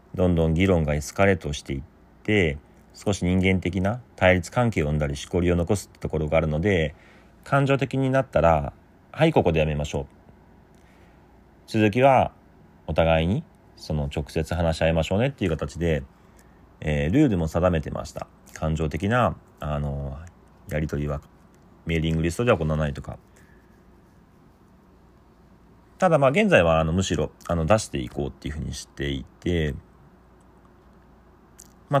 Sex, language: male, Japanese